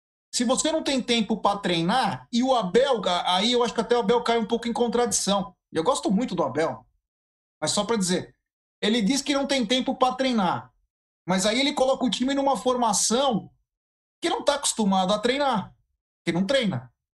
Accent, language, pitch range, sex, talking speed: Brazilian, Portuguese, 180-235 Hz, male, 200 wpm